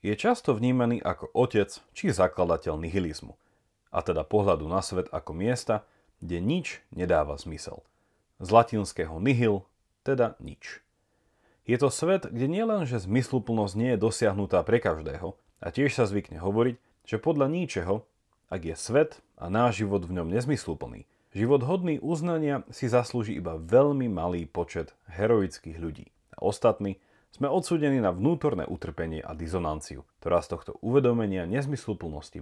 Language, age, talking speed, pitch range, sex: Slovak, 30-49, 145 wpm, 90-125 Hz, male